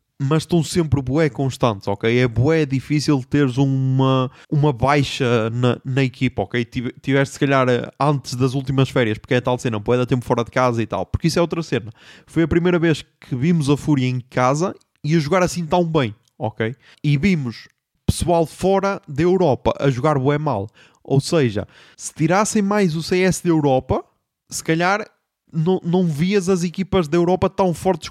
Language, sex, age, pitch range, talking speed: Portuguese, male, 20-39, 125-170 Hz, 190 wpm